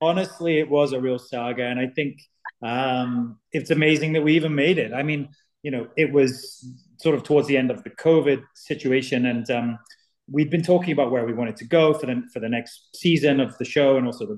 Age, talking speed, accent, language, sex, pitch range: 30-49, 225 wpm, British, English, male, 120-145 Hz